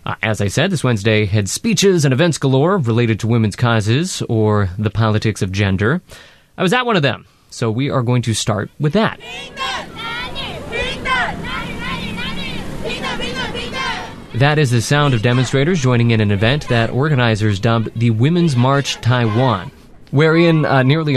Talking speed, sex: 155 wpm, male